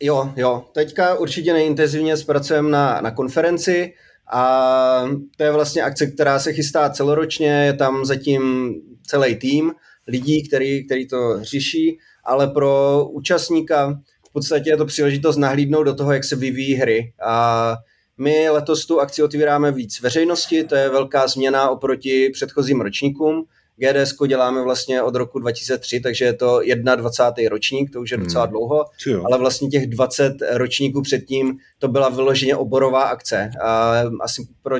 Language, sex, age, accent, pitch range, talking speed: Czech, male, 30-49, native, 125-145 Hz, 150 wpm